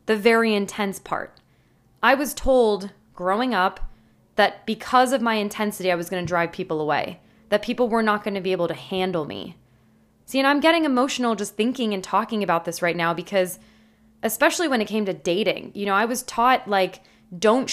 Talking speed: 200 wpm